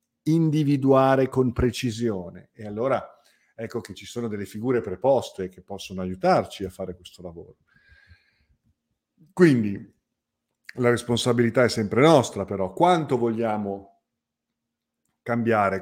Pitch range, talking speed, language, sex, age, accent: 100-135 Hz, 110 wpm, Italian, male, 50-69, native